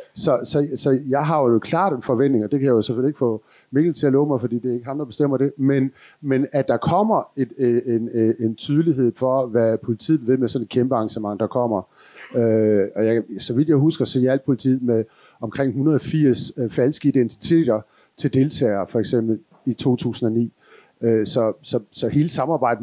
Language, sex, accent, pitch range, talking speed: Danish, male, native, 120-150 Hz, 200 wpm